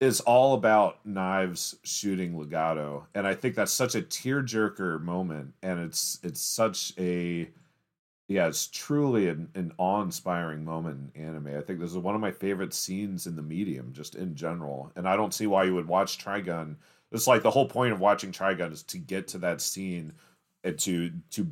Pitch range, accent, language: 80-95 Hz, American, English